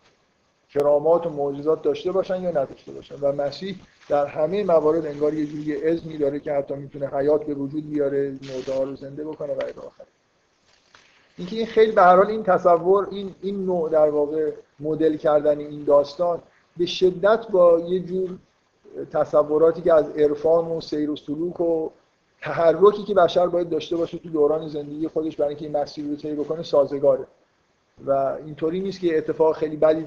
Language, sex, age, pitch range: Persian, male, 50-69, 150-175 Hz